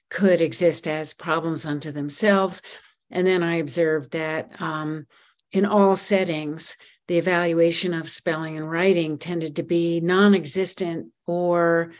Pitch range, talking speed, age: 160-190 Hz, 130 wpm, 50-69